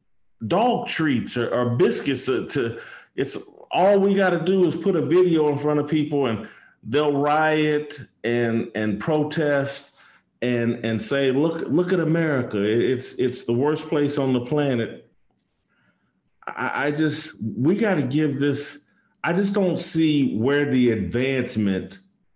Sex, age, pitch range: male, 40-59, 110-150 Hz